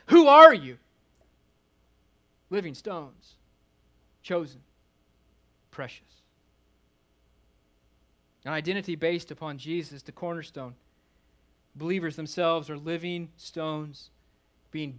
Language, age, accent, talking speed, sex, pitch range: English, 40-59, American, 80 wpm, male, 130-185 Hz